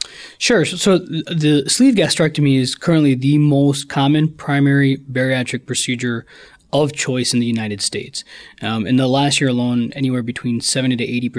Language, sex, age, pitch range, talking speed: English, male, 20-39, 120-140 Hz, 160 wpm